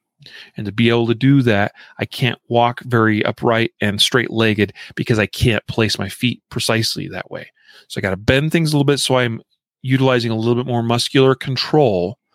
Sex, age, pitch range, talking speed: male, 30-49, 110-135 Hz, 205 wpm